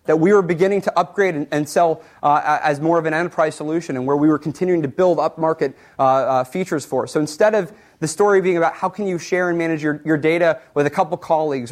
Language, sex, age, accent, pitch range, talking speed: English, male, 30-49, American, 145-180 Hz, 250 wpm